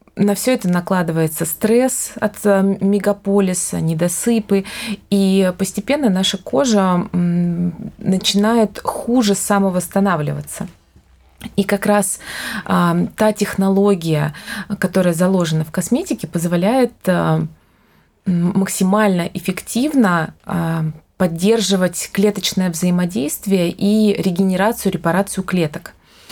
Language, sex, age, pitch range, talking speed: Russian, female, 20-39, 180-205 Hz, 80 wpm